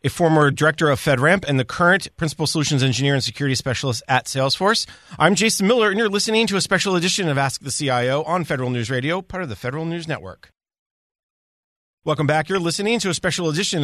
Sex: male